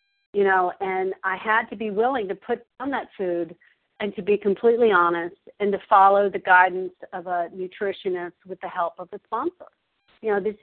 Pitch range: 185-235 Hz